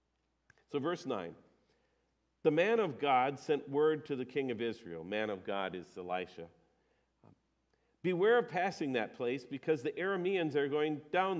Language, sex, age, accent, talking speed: English, male, 50-69, American, 160 wpm